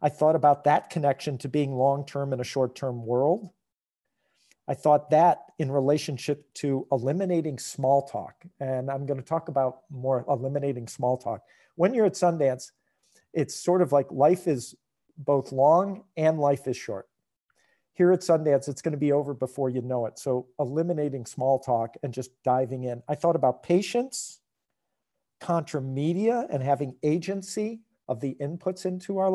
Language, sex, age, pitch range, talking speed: English, male, 50-69, 130-160 Hz, 160 wpm